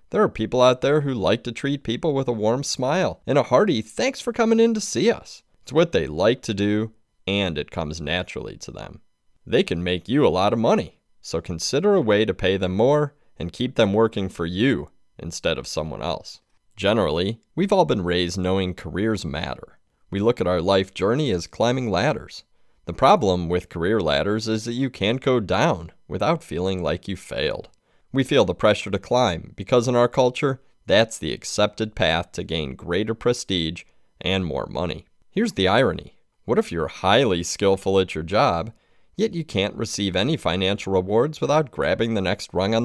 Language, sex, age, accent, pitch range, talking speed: English, male, 30-49, American, 90-130 Hz, 195 wpm